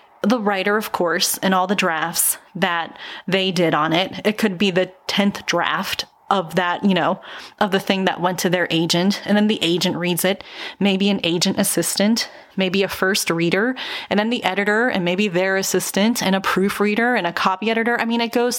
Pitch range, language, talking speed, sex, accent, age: 185-215 Hz, English, 205 wpm, female, American, 30-49